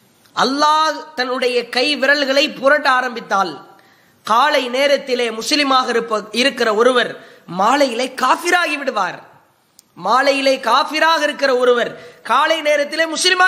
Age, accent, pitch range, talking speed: 20-39, Indian, 265-310 Hz, 100 wpm